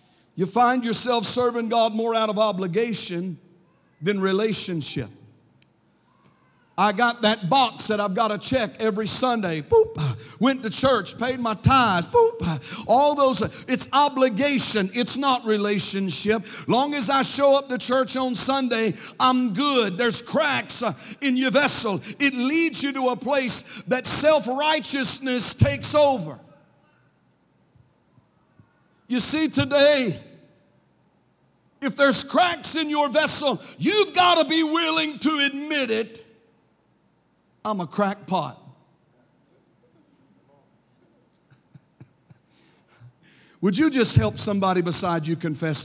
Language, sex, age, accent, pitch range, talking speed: English, male, 50-69, American, 180-260 Hz, 125 wpm